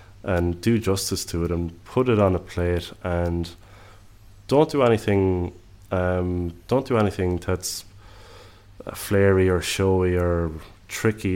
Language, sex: English, male